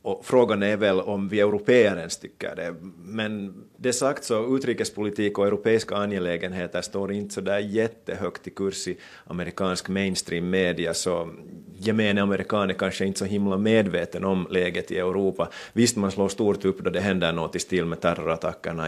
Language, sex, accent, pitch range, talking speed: Swedish, male, Finnish, 90-100 Hz, 170 wpm